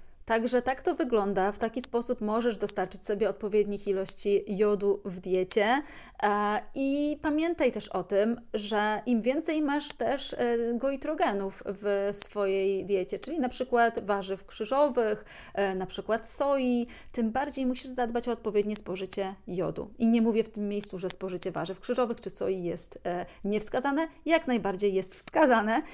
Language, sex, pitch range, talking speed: Polish, female, 195-240 Hz, 145 wpm